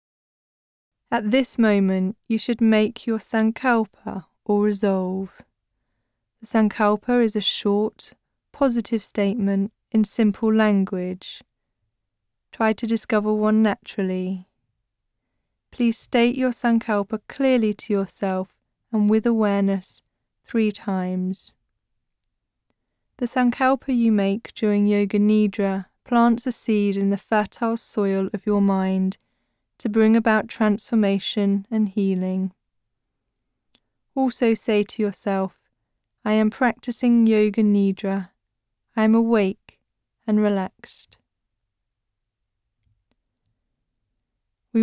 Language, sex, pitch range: English, female, 185-225 Hz